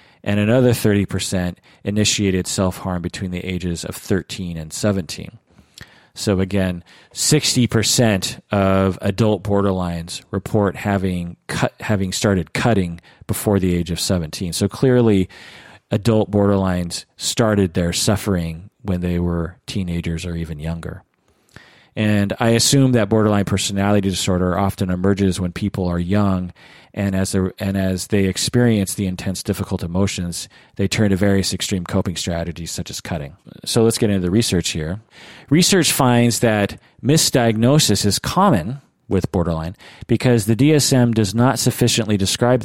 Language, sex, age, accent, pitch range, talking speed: English, male, 40-59, American, 90-110 Hz, 135 wpm